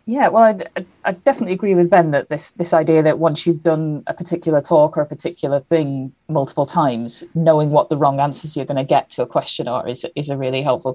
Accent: British